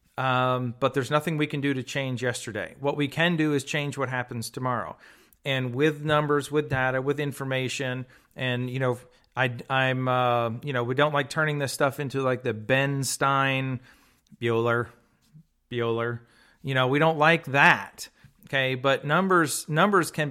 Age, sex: 40-59, male